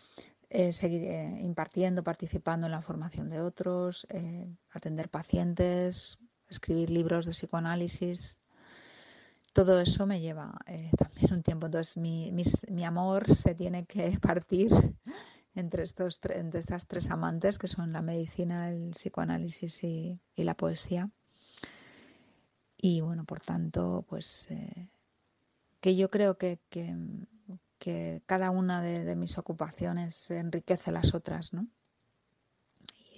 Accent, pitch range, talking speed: Spanish, 160-180 Hz, 130 wpm